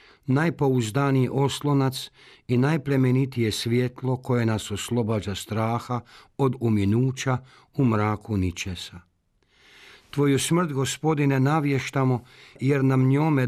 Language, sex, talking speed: Croatian, male, 95 wpm